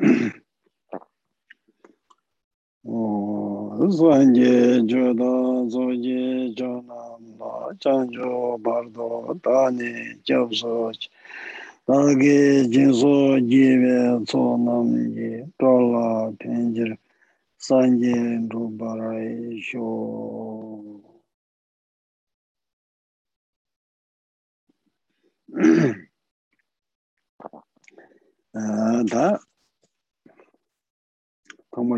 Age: 50-69